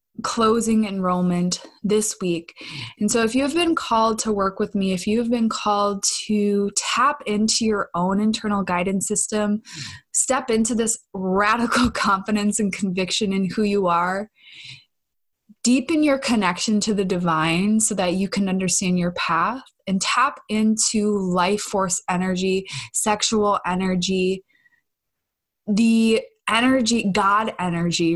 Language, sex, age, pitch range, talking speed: English, female, 20-39, 190-225 Hz, 135 wpm